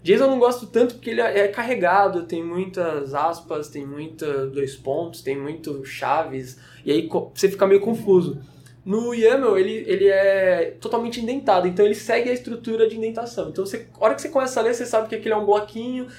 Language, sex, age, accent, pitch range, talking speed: Portuguese, male, 20-39, Brazilian, 160-220 Hz, 200 wpm